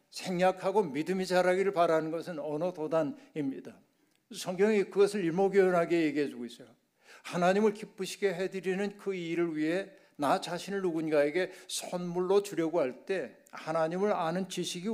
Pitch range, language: 150-190 Hz, Korean